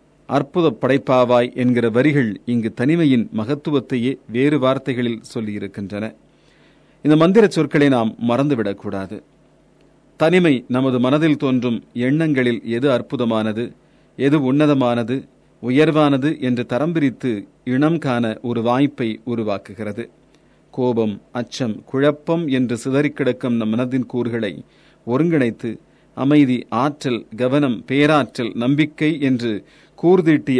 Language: Tamil